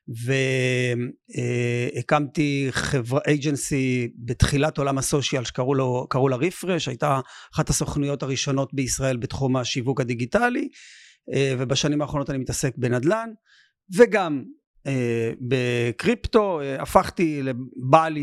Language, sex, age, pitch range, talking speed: Hebrew, male, 40-59, 135-160 Hz, 85 wpm